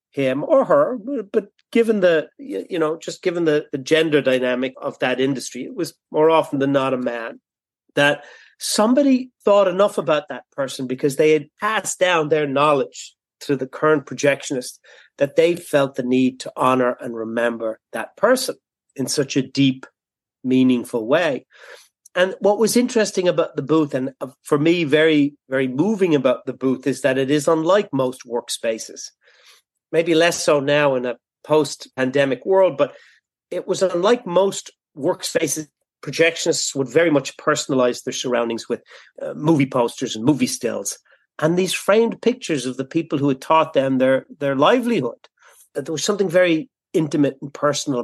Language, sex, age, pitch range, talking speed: English, male, 40-59, 135-175 Hz, 165 wpm